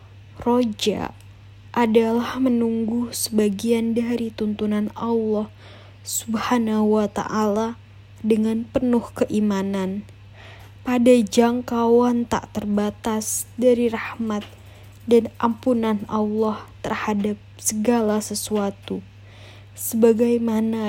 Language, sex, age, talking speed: Indonesian, female, 20-39, 75 wpm